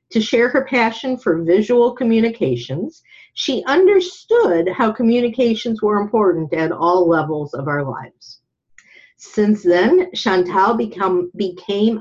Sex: female